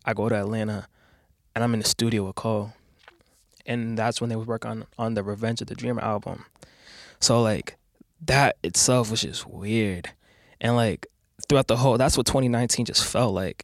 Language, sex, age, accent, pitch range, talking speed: English, male, 20-39, American, 105-120 Hz, 190 wpm